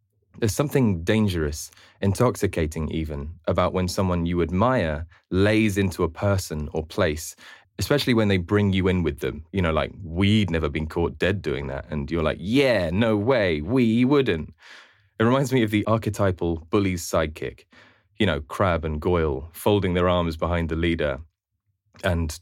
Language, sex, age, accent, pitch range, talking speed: English, male, 20-39, British, 85-110 Hz, 165 wpm